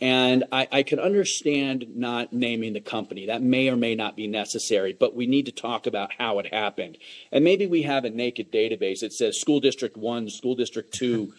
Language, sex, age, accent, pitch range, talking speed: English, male, 40-59, American, 125-180 Hz, 210 wpm